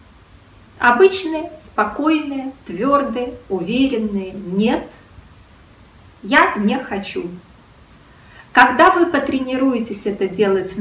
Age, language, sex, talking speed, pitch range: 20-39, Russian, female, 70 wpm, 195-285 Hz